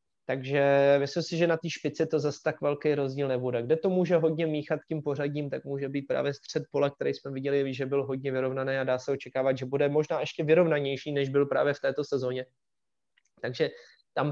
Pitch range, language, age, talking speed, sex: 135-160 Hz, Czech, 20-39, 210 wpm, male